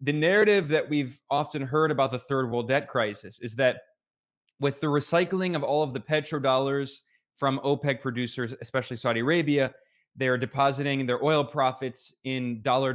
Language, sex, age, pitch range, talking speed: English, male, 20-39, 125-150 Hz, 165 wpm